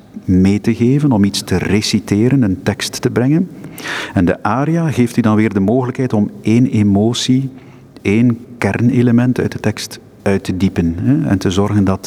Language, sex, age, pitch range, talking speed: Dutch, male, 50-69, 100-125 Hz, 175 wpm